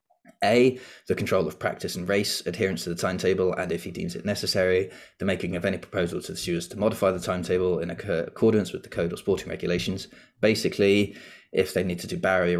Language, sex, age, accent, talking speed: English, male, 20-39, British, 210 wpm